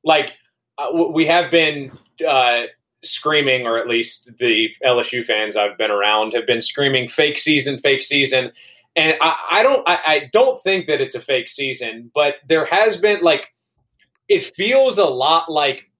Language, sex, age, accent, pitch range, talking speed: English, male, 20-39, American, 135-175 Hz, 170 wpm